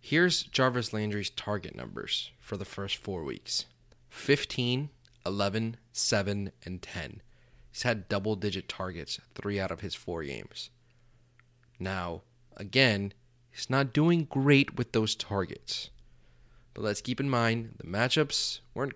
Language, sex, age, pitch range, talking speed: English, male, 30-49, 100-125 Hz, 135 wpm